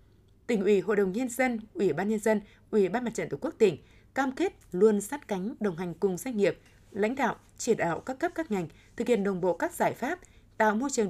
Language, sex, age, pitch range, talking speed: Vietnamese, female, 20-39, 185-235 Hz, 245 wpm